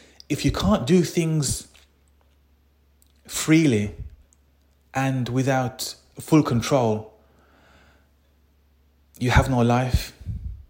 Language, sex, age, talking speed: English, male, 30-49, 80 wpm